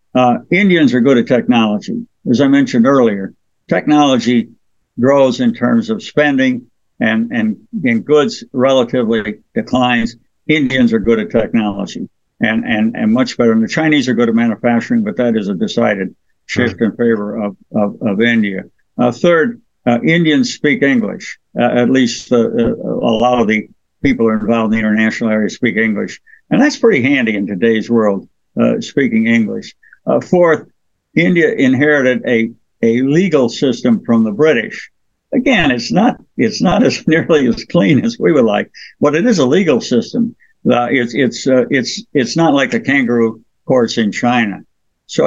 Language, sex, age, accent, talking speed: English, male, 60-79, American, 170 wpm